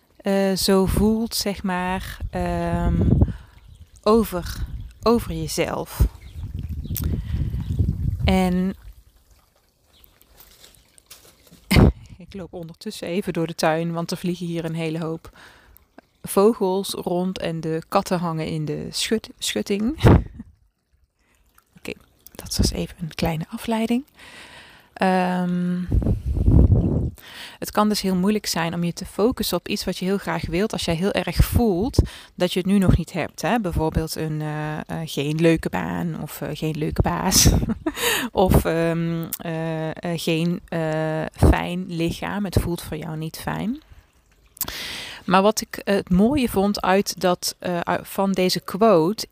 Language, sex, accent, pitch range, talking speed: Dutch, female, Dutch, 160-195 Hz, 135 wpm